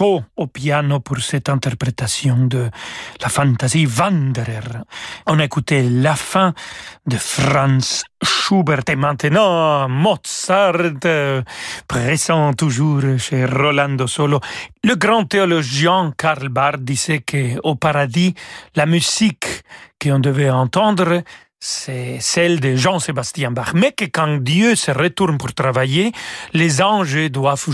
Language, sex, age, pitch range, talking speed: French, male, 40-59, 140-180 Hz, 115 wpm